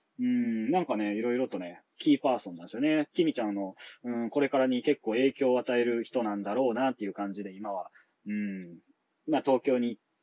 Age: 20-39